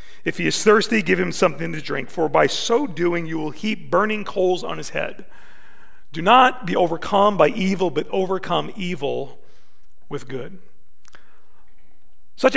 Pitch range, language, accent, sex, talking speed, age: 175-225 Hz, English, American, male, 160 wpm, 40-59